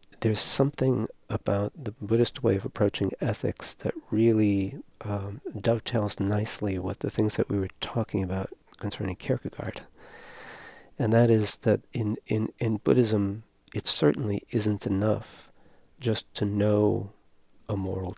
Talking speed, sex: 135 wpm, male